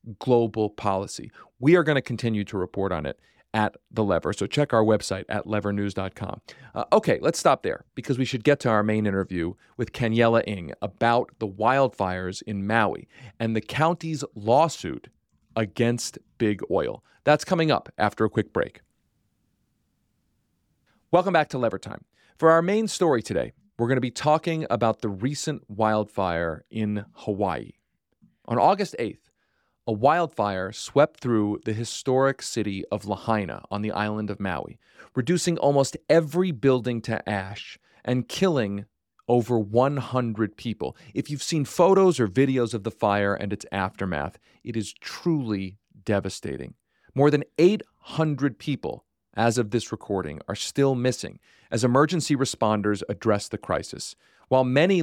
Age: 40-59